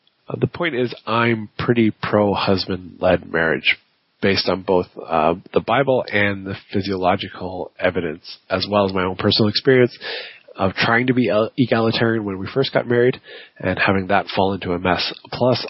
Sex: male